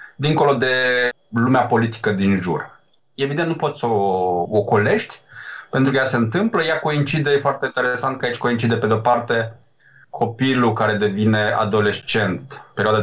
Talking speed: 150 wpm